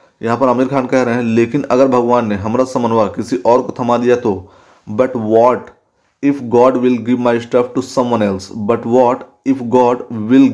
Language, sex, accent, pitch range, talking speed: Hindi, male, native, 110-135 Hz, 195 wpm